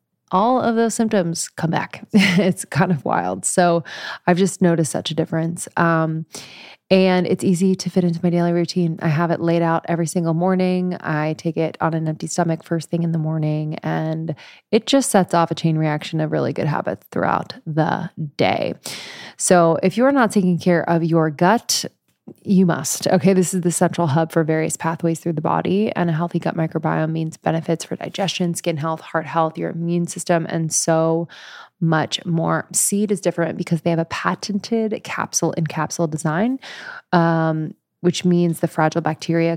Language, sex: English, female